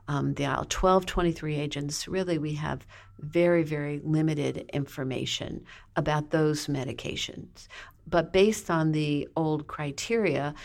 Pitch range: 145-165 Hz